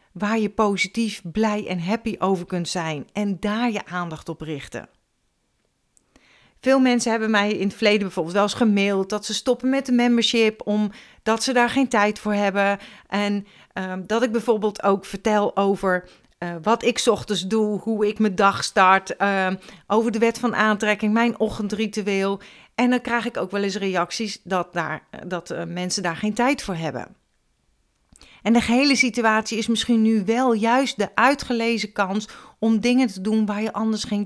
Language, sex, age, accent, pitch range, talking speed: Dutch, female, 40-59, Dutch, 195-240 Hz, 180 wpm